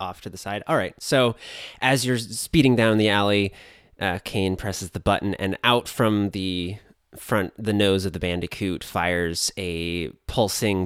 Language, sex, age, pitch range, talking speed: English, male, 30-49, 90-110 Hz, 170 wpm